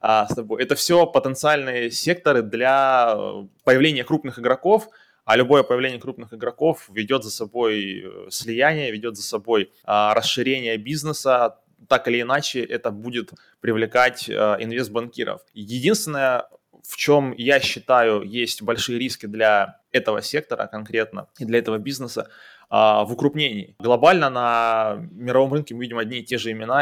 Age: 20-39